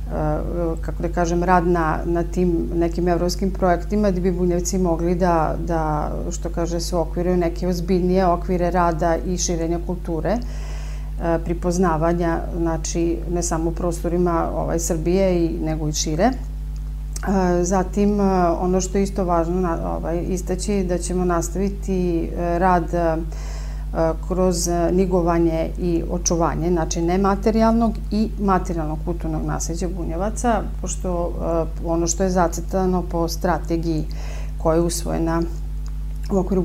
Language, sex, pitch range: Croatian, female, 165-185 Hz